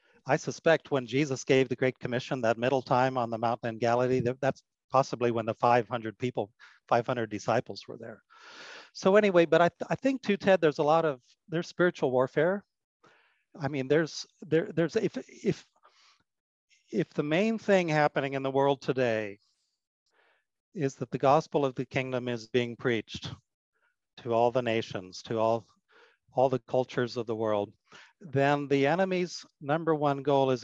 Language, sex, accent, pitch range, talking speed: English, male, American, 120-155 Hz, 170 wpm